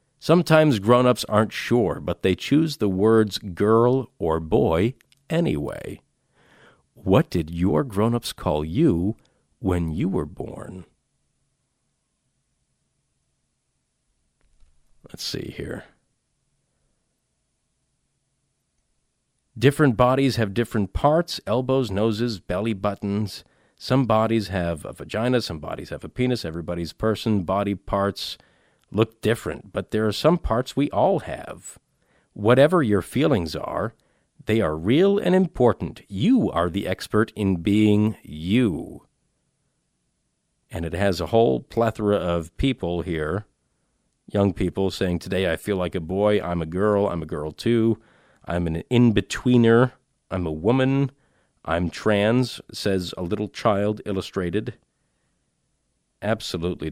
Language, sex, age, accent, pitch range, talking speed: English, male, 50-69, American, 90-120 Hz, 120 wpm